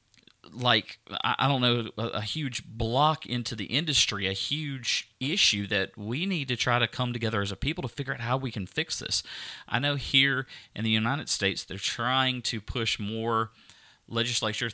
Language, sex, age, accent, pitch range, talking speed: English, male, 30-49, American, 100-120 Hz, 185 wpm